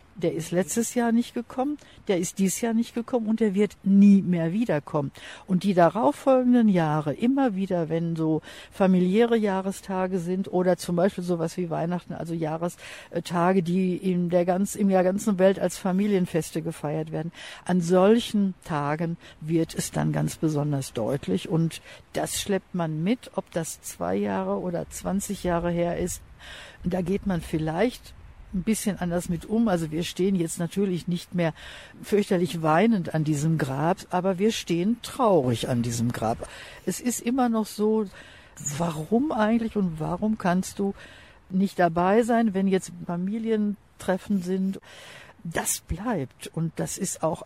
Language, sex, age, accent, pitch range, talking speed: German, female, 60-79, German, 165-205 Hz, 155 wpm